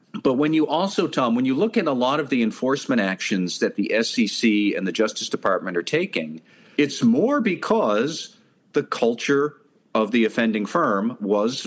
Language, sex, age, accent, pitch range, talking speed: English, male, 50-69, American, 105-155 Hz, 175 wpm